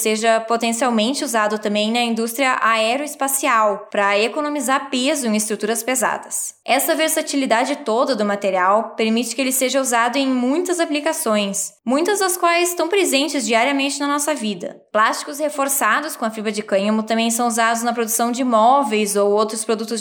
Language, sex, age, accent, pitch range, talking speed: Portuguese, female, 10-29, Brazilian, 225-280 Hz, 155 wpm